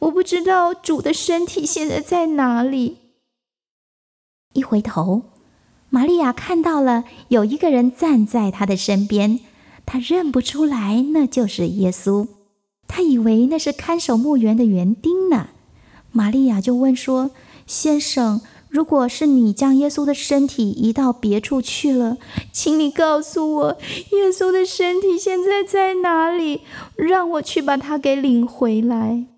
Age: 20-39